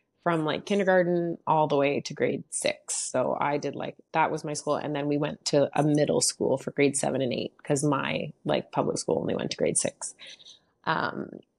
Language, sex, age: English, female, 20-39